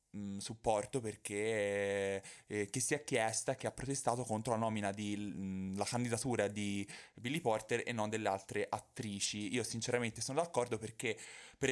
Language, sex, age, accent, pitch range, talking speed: Italian, male, 20-39, native, 100-125 Hz, 165 wpm